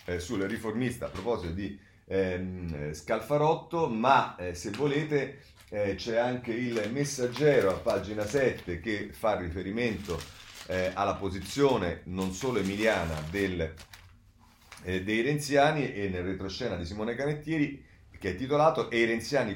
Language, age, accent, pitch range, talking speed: Italian, 40-59, native, 85-120 Hz, 130 wpm